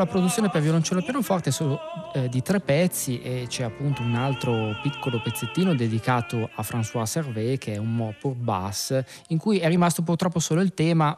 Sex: male